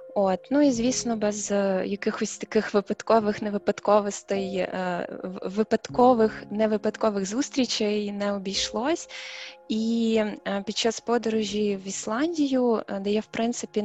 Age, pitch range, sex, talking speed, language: 20-39, 200-235 Hz, female, 100 wpm, Ukrainian